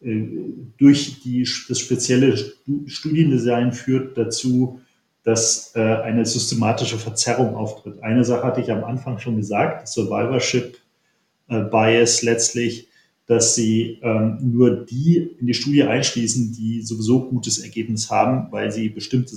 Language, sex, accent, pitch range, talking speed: German, male, German, 110-125 Hz, 125 wpm